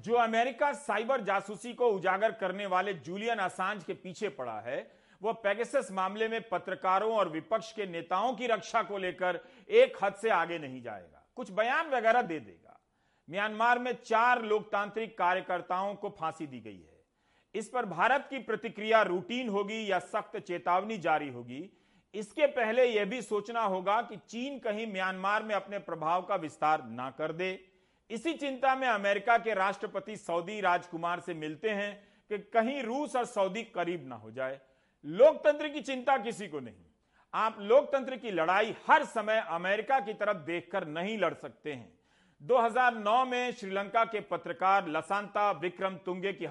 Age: 40-59